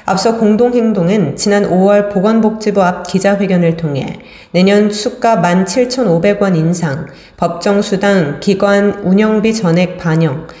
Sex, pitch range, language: female, 170-210 Hz, Korean